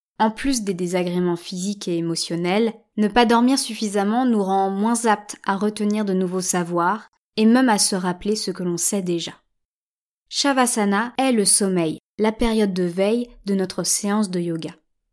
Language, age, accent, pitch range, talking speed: French, 20-39, French, 185-220 Hz, 170 wpm